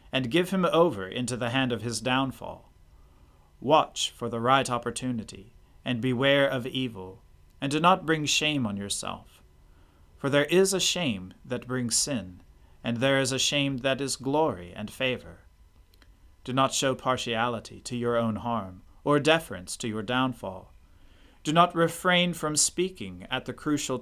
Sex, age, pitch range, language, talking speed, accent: male, 40-59, 90-140 Hz, English, 160 wpm, American